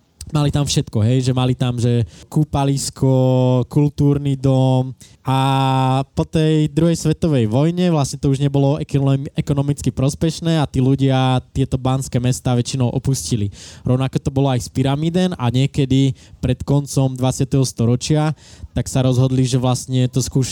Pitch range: 130-140 Hz